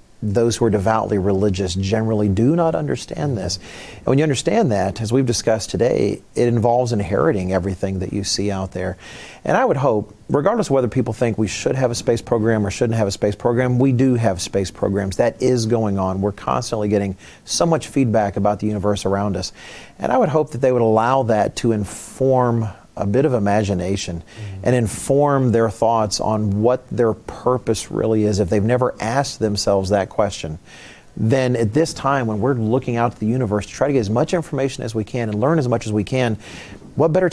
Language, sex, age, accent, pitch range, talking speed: English, male, 40-59, American, 100-125 Hz, 210 wpm